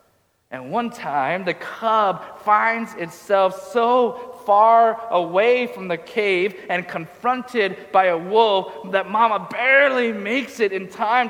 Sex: male